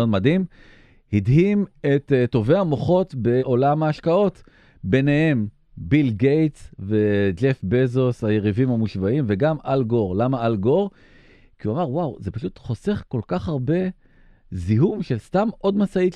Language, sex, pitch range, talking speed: Hebrew, male, 115-155 Hz, 135 wpm